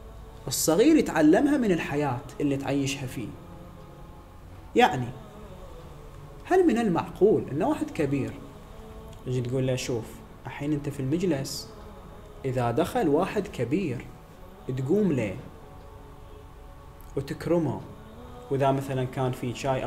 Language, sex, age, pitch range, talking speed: Arabic, male, 30-49, 110-180 Hz, 105 wpm